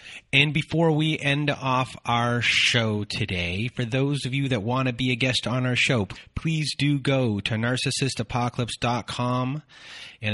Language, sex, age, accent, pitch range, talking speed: English, male, 30-49, American, 110-135 Hz, 155 wpm